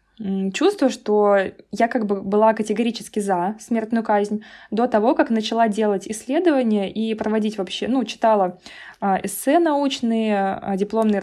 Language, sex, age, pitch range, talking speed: Russian, female, 20-39, 195-225 Hz, 130 wpm